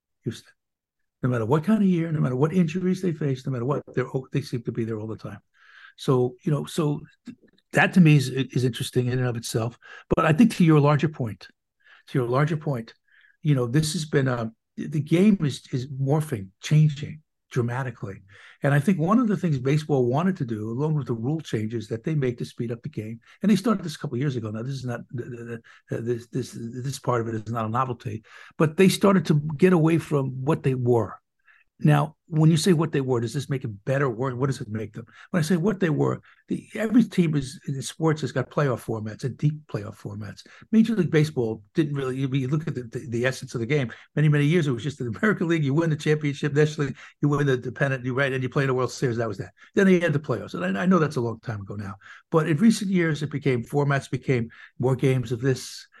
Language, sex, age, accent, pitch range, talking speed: English, male, 60-79, American, 125-160 Hz, 245 wpm